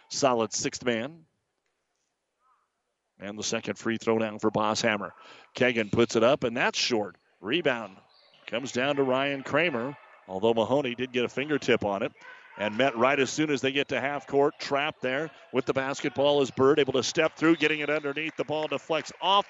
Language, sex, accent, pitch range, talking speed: English, male, American, 115-145 Hz, 190 wpm